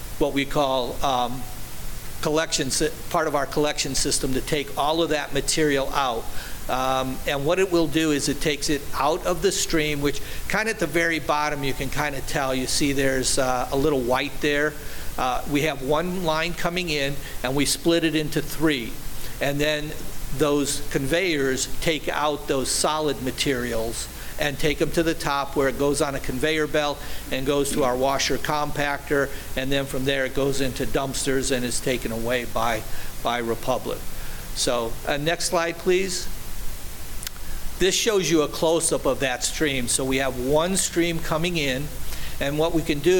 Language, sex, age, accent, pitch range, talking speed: English, male, 50-69, American, 135-155 Hz, 180 wpm